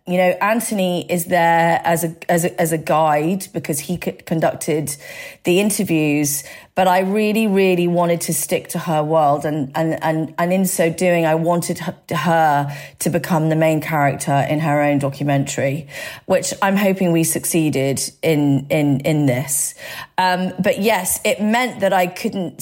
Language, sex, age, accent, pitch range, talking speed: English, female, 30-49, British, 160-185 Hz, 165 wpm